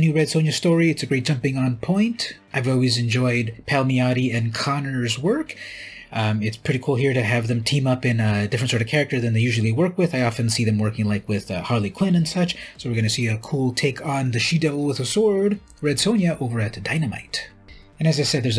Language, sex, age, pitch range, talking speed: English, male, 30-49, 110-150 Hz, 240 wpm